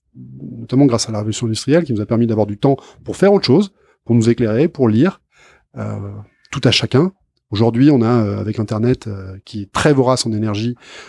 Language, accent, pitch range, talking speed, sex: French, French, 110-140 Hz, 210 wpm, male